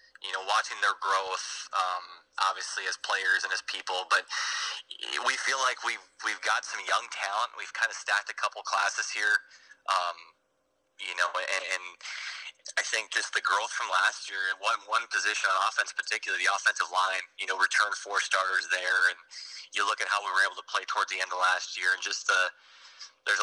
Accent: American